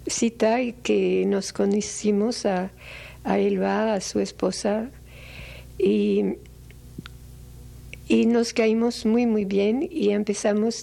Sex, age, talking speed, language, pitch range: female, 60-79, 100 wpm, Spanish, 195-230 Hz